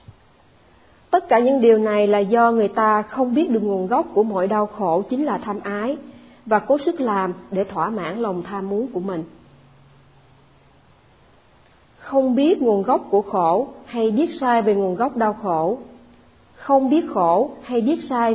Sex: female